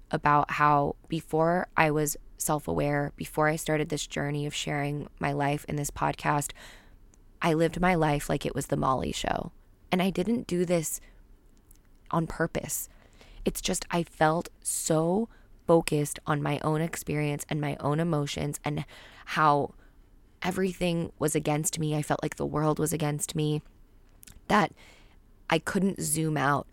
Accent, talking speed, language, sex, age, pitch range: American, 155 wpm, English, female, 20-39, 145-165 Hz